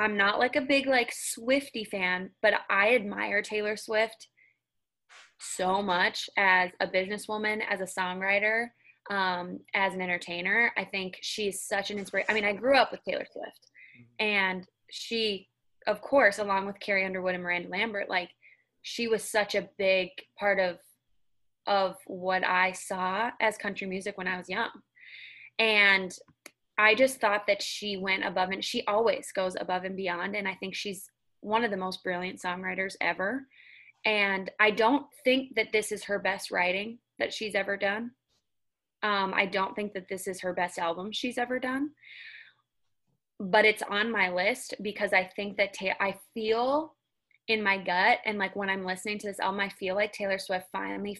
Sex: female